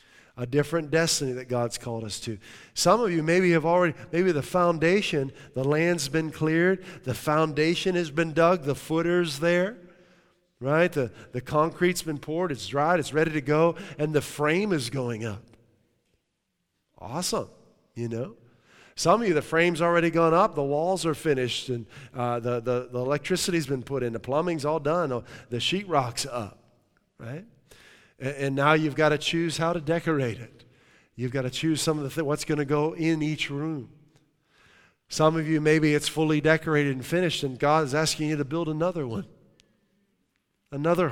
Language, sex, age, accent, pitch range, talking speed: English, male, 40-59, American, 125-165 Hz, 180 wpm